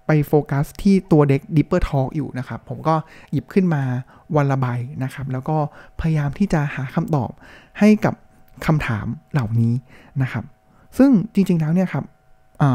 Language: Thai